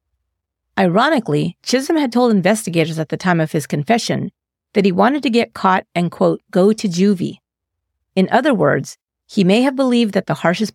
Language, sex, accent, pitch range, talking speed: English, female, American, 155-225 Hz, 180 wpm